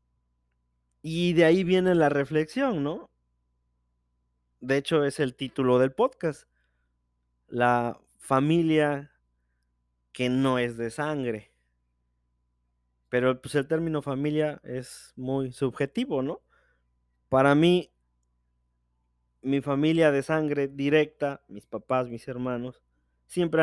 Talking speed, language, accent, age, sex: 105 wpm, Spanish, Mexican, 20-39, male